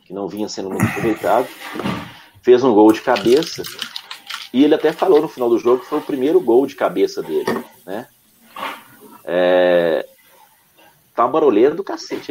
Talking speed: 160 wpm